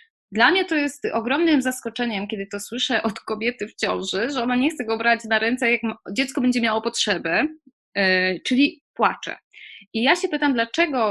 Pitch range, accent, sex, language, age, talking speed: 210-265 Hz, native, female, Polish, 20-39, 180 wpm